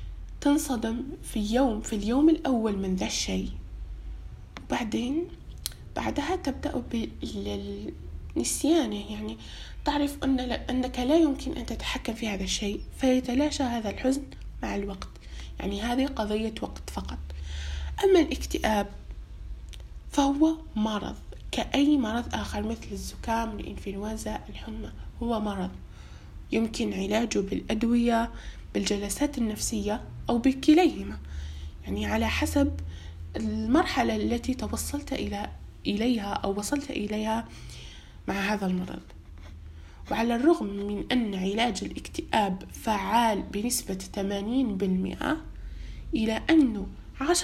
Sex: female